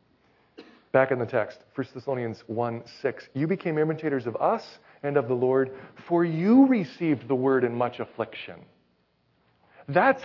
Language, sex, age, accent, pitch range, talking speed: English, male, 40-59, American, 115-155 Hz, 150 wpm